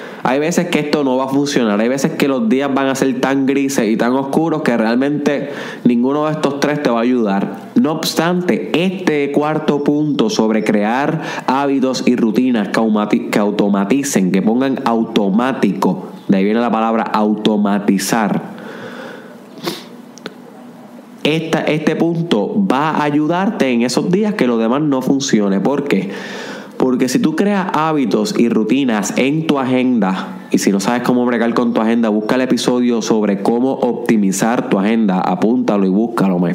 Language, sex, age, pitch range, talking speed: Spanish, male, 20-39, 115-155 Hz, 160 wpm